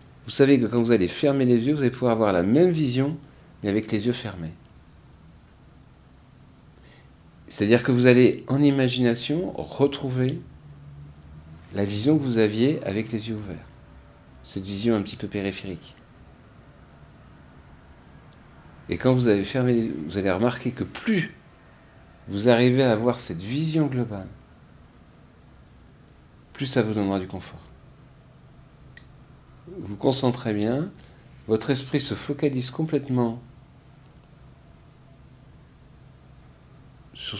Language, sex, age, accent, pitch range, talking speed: French, male, 50-69, French, 100-130 Hz, 125 wpm